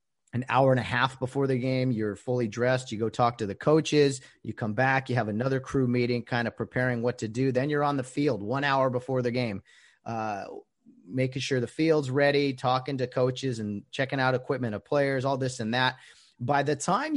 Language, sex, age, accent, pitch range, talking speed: English, male, 30-49, American, 125-150 Hz, 220 wpm